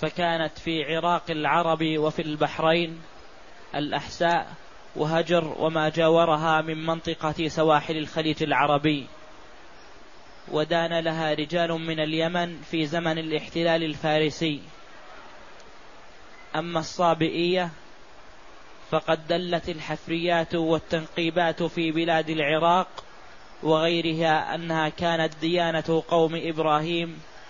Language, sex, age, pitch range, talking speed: Arabic, male, 20-39, 155-170 Hz, 85 wpm